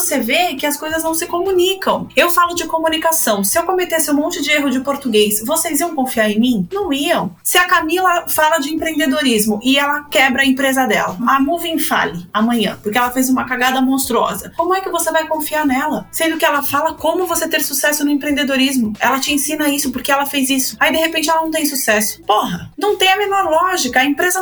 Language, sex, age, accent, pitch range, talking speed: Portuguese, female, 20-39, Brazilian, 240-330 Hz, 220 wpm